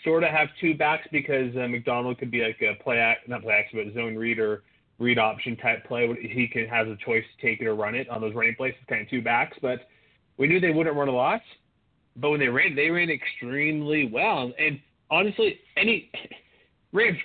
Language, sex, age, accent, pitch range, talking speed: English, male, 30-49, American, 120-155 Hz, 225 wpm